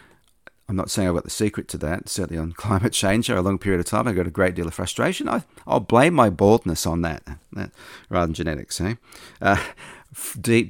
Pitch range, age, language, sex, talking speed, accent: 85-100 Hz, 40-59, English, male, 220 wpm, Australian